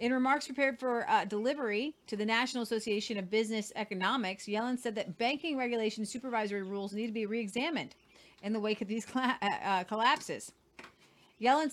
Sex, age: female, 40-59